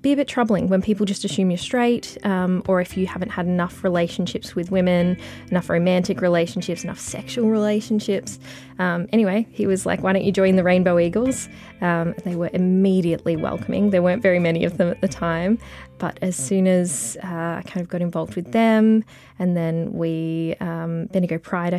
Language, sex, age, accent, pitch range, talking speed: English, female, 20-39, Australian, 175-200 Hz, 195 wpm